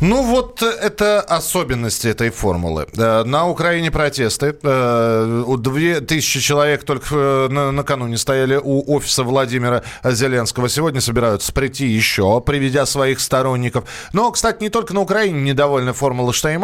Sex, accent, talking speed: male, native, 120 wpm